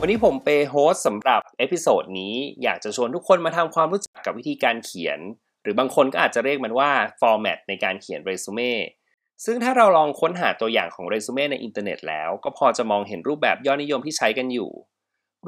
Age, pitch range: 20-39, 120-165 Hz